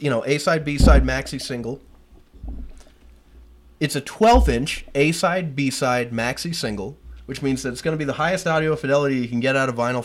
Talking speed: 180 wpm